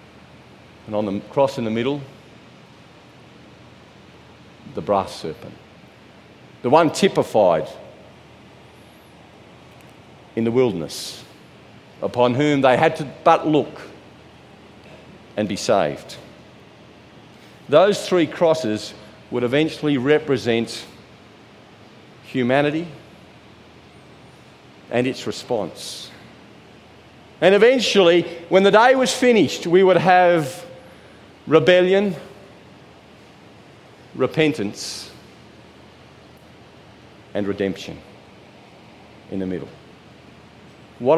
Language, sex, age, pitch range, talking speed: English, male, 50-69, 125-180 Hz, 80 wpm